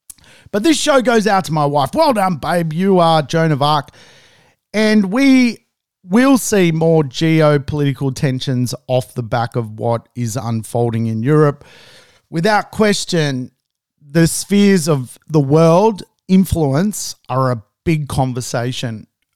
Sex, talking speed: male, 135 wpm